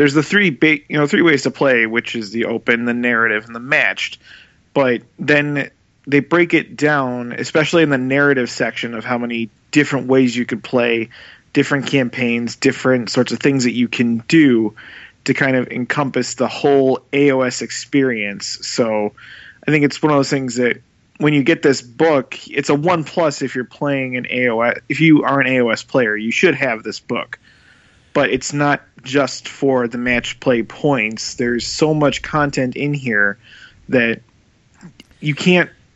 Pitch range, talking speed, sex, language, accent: 120-145 Hz, 180 wpm, male, English, American